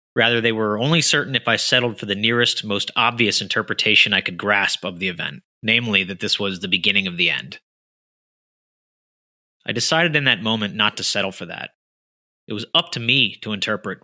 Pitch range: 100-125 Hz